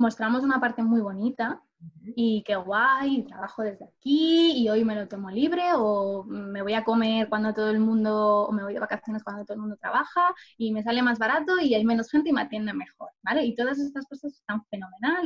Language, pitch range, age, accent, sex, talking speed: Spanish, 210-260 Hz, 20-39, Spanish, female, 220 wpm